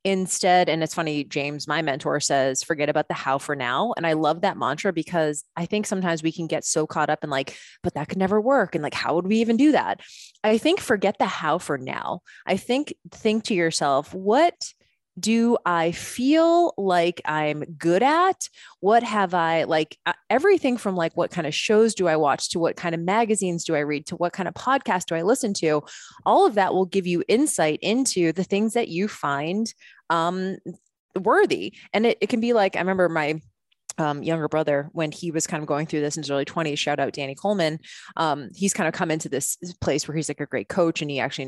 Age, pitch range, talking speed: 20-39, 155-195 Hz, 225 wpm